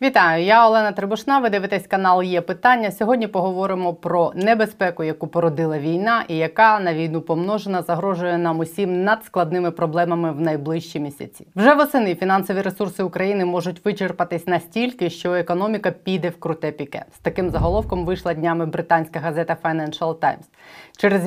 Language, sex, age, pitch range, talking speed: Ukrainian, female, 20-39, 165-195 Hz, 150 wpm